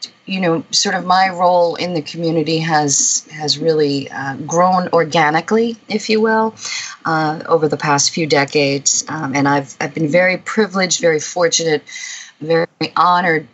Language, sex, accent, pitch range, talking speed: English, female, American, 150-180 Hz, 155 wpm